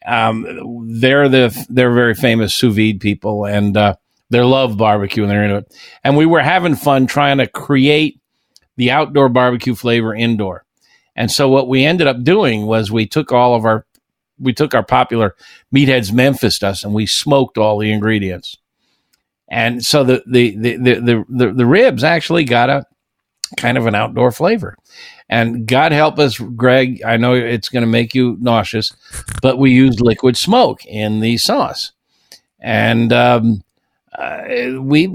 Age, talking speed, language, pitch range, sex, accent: 50-69, 170 wpm, English, 115-145 Hz, male, American